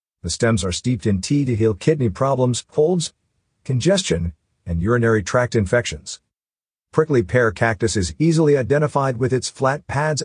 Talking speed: 150 wpm